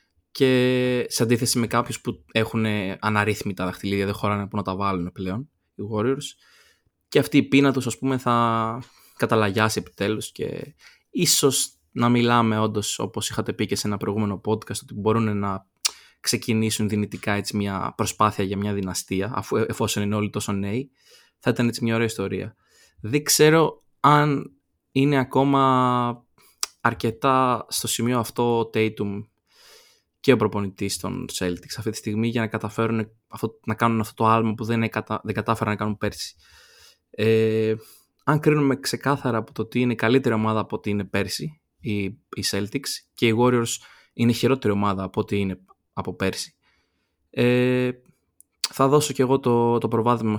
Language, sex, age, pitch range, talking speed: Greek, male, 20-39, 105-120 Hz, 160 wpm